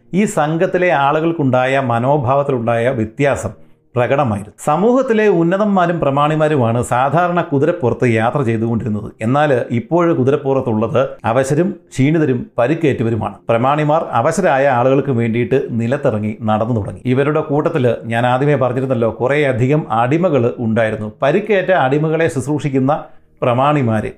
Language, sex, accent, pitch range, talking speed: Malayalam, male, native, 115-155 Hz, 95 wpm